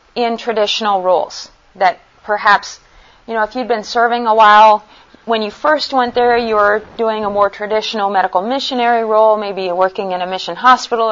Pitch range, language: 210-260 Hz, English